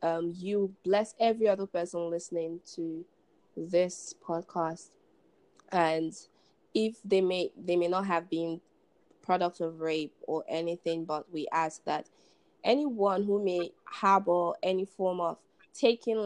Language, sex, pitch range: English, female, 170-205 Hz